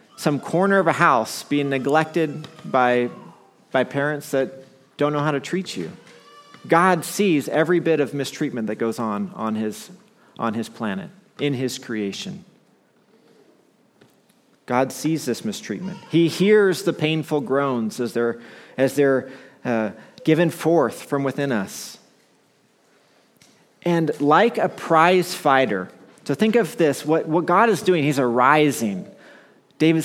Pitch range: 125-180 Hz